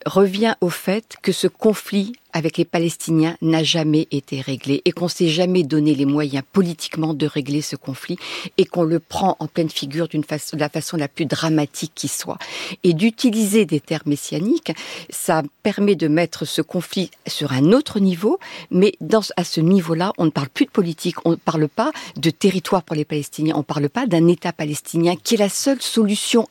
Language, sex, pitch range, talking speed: French, female, 160-215 Hz, 205 wpm